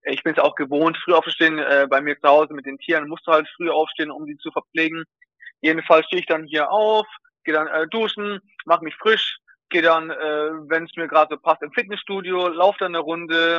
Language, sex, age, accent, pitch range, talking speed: German, male, 20-39, German, 160-190 Hz, 235 wpm